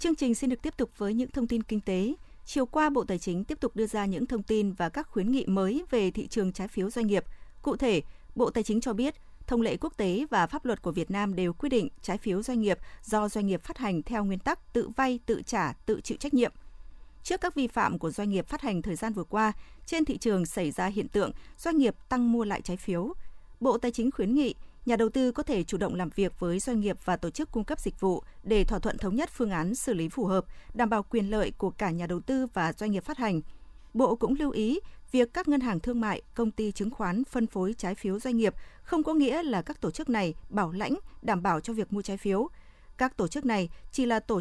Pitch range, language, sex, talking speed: 195-250 Hz, Vietnamese, female, 265 wpm